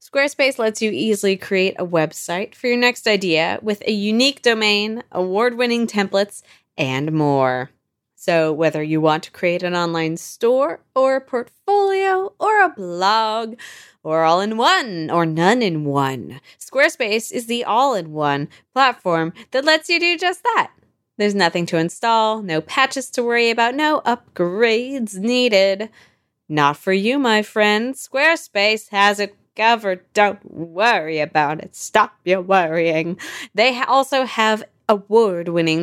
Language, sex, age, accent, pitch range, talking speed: English, female, 20-39, American, 170-235 Hz, 135 wpm